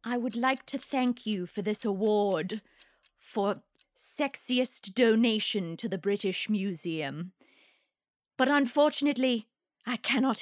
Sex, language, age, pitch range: female, English, 30-49, 200-270 Hz